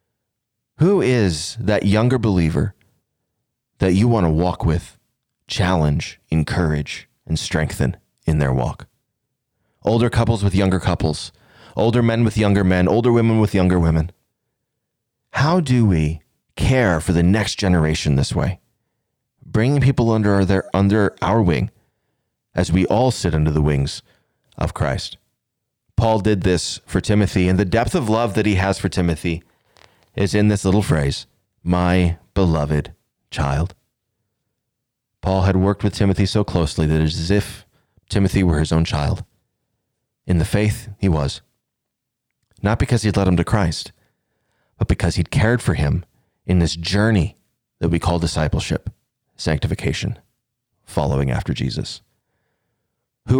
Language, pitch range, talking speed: English, 85-115 Hz, 145 wpm